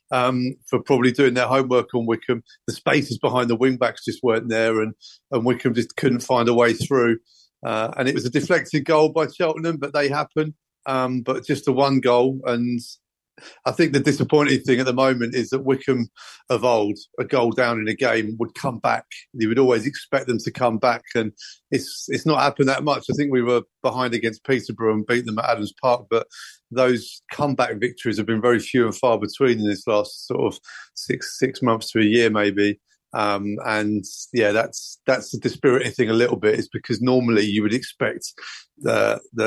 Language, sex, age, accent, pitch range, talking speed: English, male, 40-59, British, 110-130 Hz, 205 wpm